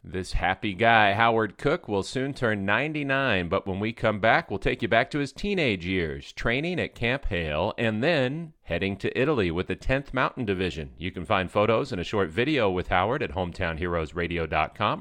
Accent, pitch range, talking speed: American, 100-140 Hz, 190 wpm